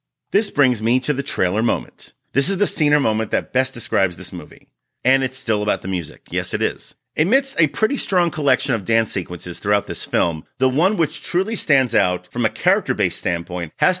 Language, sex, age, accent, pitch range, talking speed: English, male, 40-59, American, 110-155 Hz, 205 wpm